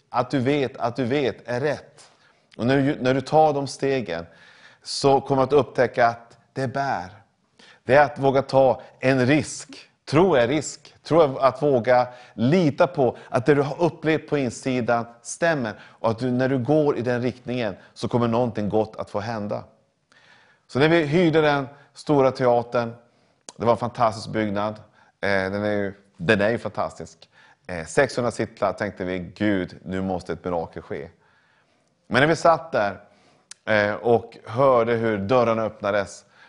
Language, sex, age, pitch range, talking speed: English, male, 30-49, 105-135 Hz, 160 wpm